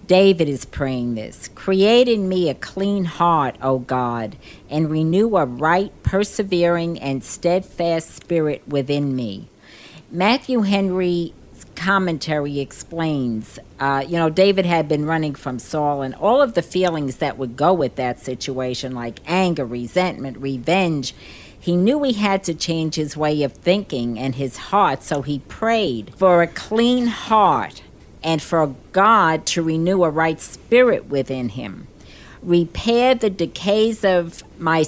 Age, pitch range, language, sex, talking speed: 50-69, 135-195 Hz, English, female, 145 wpm